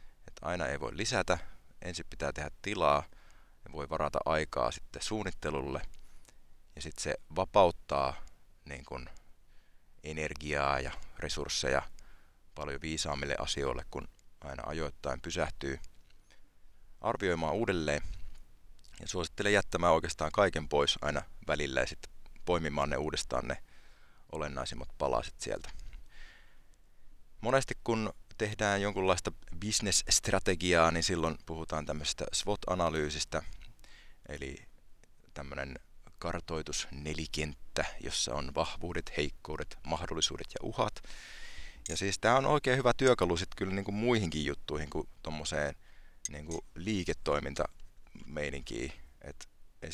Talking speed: 105 wpm